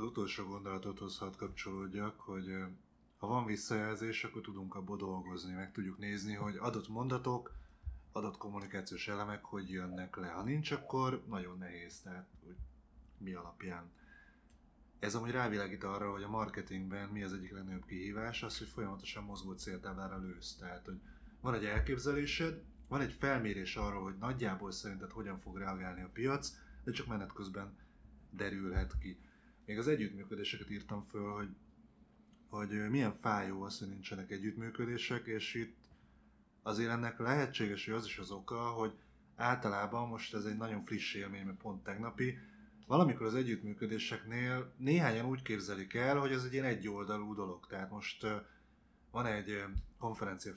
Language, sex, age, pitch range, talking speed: Hungarian, male, 20-39, 95-115 Hz, 150 wpm